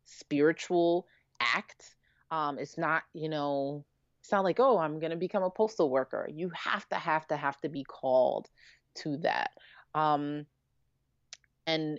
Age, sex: 30-49, female